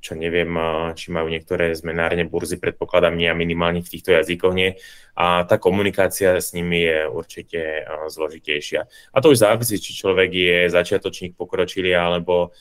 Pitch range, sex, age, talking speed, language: 85-105 Hz, male, 20-39, 150 wpm, Czech